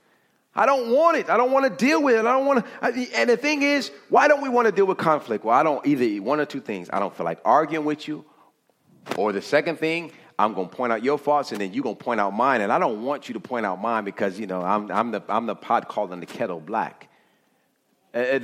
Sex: male